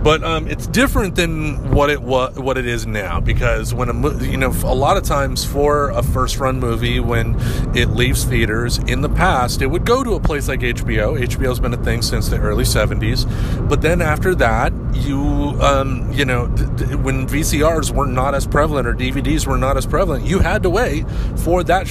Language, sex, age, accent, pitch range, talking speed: English, male, 40-59, American, 120-140 Hz, 215 wpm